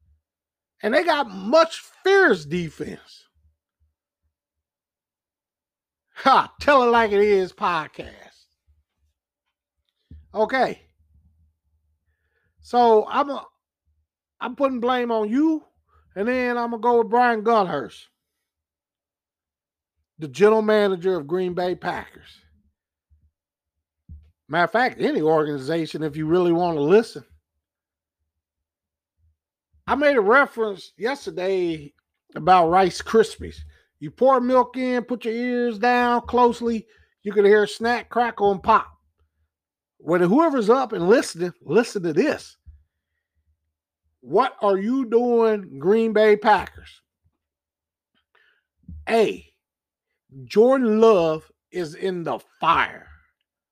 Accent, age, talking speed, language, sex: American, 50-69, 105 wpm, English, male